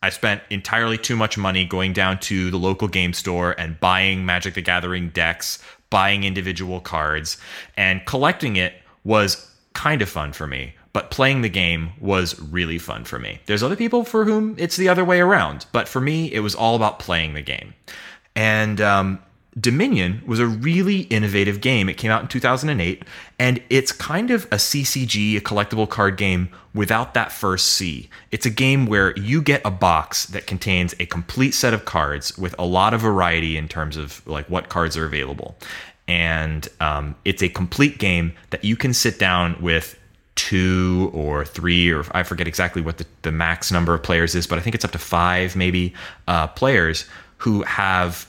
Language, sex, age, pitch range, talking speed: English, male, 30-49, 85-110 Hz, 190 wpm